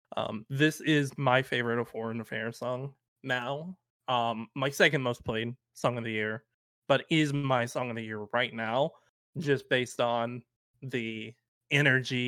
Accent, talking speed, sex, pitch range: American, 160 wpm, male, 110-135 Hz